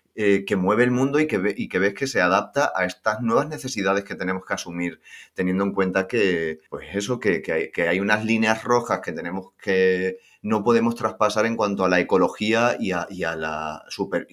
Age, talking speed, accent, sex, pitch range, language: 30-49, 215 wpm, Spanish, male, 90-105 Hz, Spanish